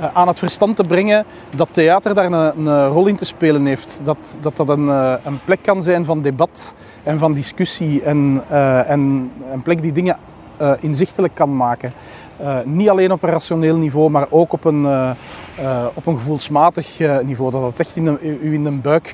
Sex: male